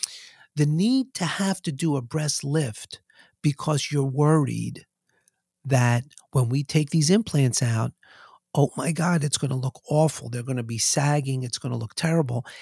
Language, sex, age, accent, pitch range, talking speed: English, male, 50-69, American, 130-165 Hz, 175 wpm